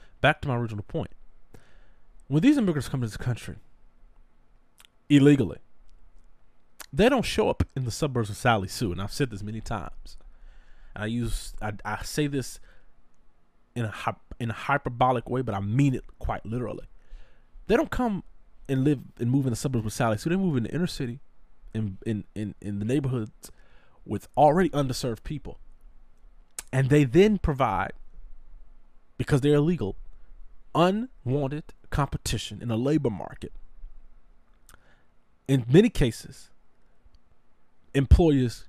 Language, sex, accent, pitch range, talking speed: English, male, American, 90-140 Hz, 145 wpm